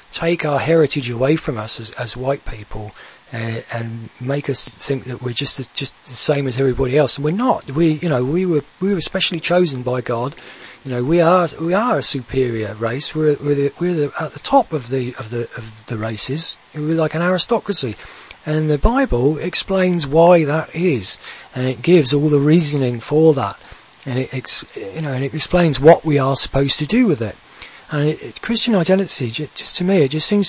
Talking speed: 215 wpm